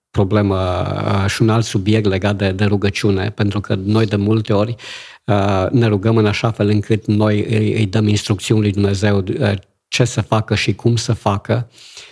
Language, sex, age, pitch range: Romanian, male, 50-69, 100-110 Hz